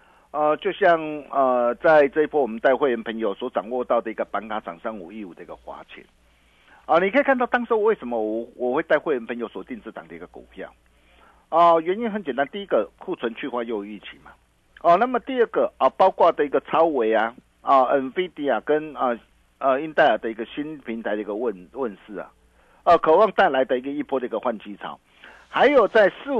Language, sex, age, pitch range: Chinese, male, 50-69, 115-170 Hz